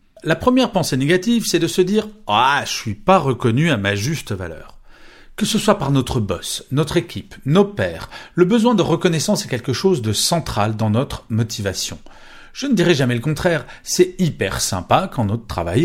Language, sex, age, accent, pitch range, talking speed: French, male, 40-59, French, 105-175 Hz, 205 wpm